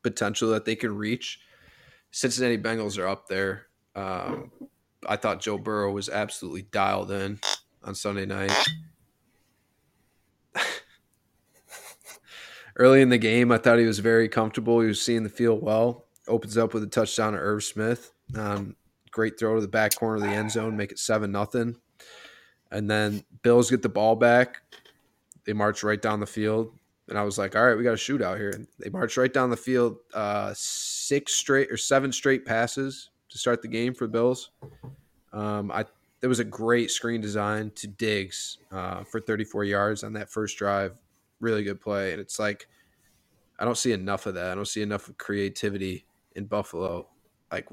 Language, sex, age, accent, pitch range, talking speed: English, male, 20-39, American, 100-120 Hz, 180 wpm